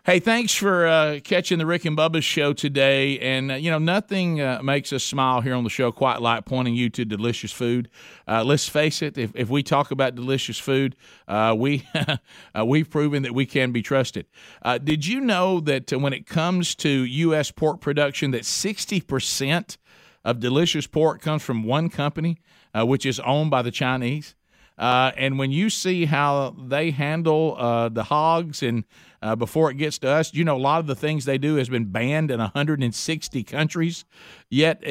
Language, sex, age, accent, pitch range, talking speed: English, male, 50-69, American, 130-160 Hz, 200 wpm